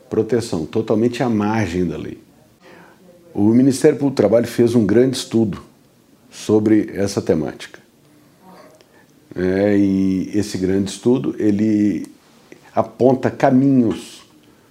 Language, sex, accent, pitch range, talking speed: Portuguese, male, Brazilian, 95-120 Hz, 105 wpm